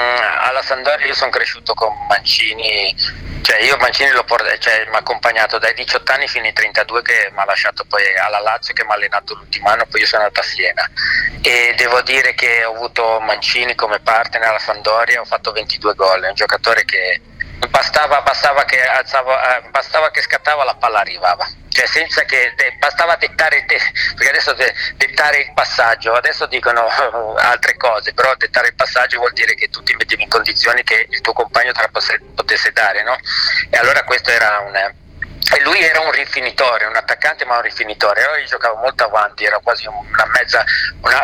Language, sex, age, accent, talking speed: Italian, male, 40-59, native, 185 wpm